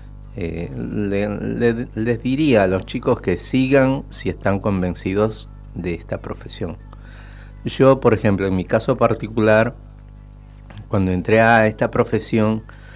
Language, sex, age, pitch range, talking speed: Spanish, male, 50-69, 95-120 Hz, 120 wpm